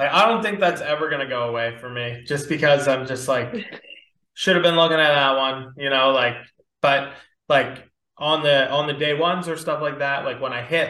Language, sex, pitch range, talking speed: English, male, 135-160 Hz, 235 wpm